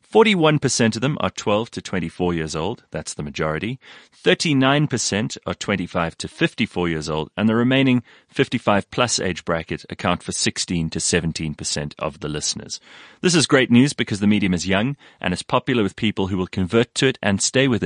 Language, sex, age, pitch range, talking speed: English, male, 30-49, 85-120 Hz, 185 wpm